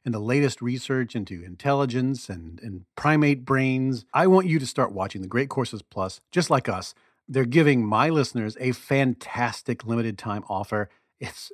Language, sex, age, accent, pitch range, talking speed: English, male, 40-59, American, 115-145 Hz, 165 wpm